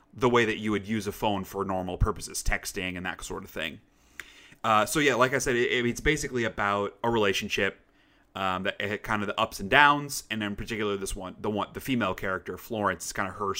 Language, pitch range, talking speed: English, 100-125 Hz, 235 wpm